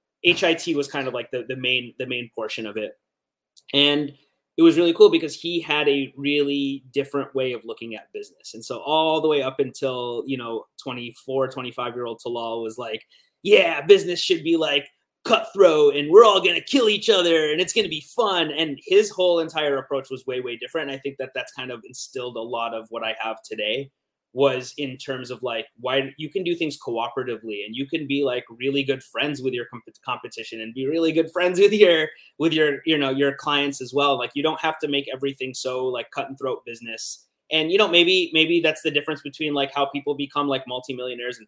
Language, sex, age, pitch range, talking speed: English, male, 30-49, 125-155 Hz, 220 wpm